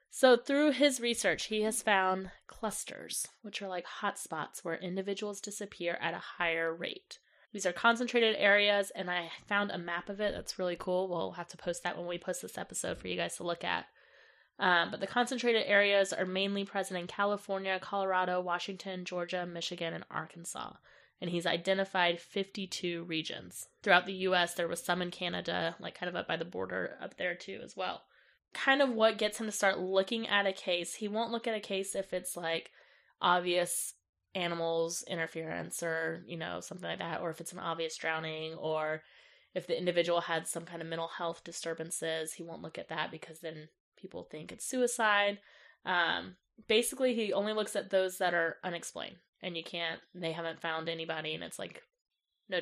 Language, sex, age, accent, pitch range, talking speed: English, female, 20-39, American, 170-205 Hz, 190 wpm